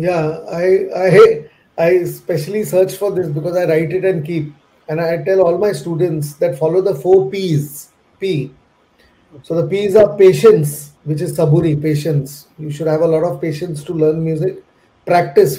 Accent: native